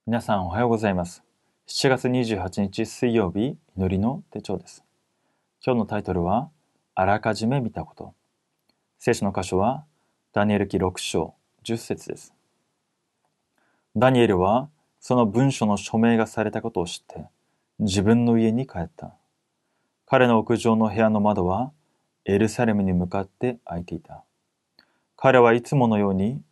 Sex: male